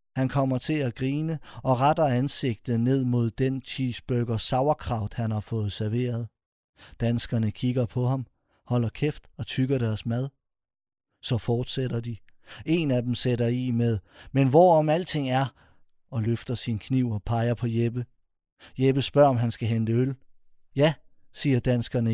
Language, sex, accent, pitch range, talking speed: Danish, male, native, 115-130 Hz, 155 wpm